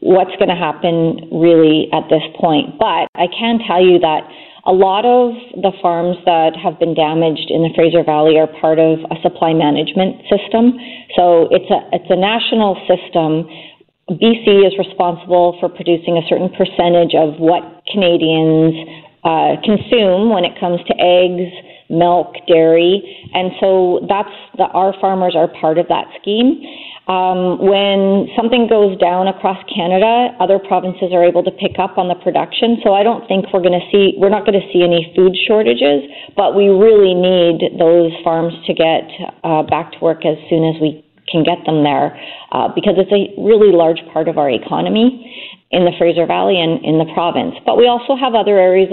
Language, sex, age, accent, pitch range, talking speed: English, female, 40-59, American, 165-195 Hz, 185 wpm